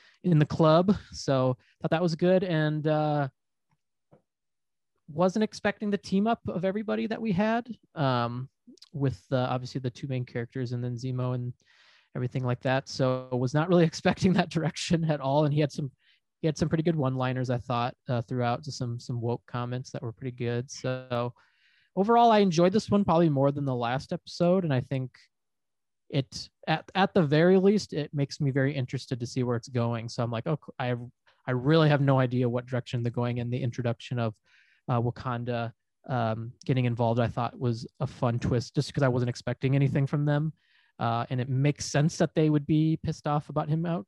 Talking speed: 205 wpm